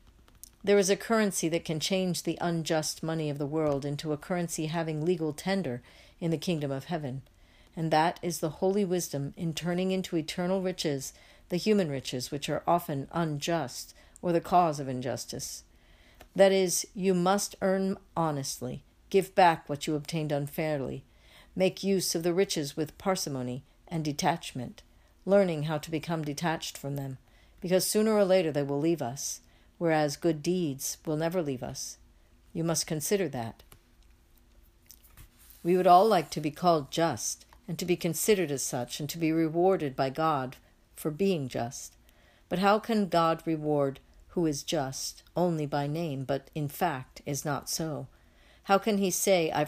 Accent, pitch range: American, 135-175 Hz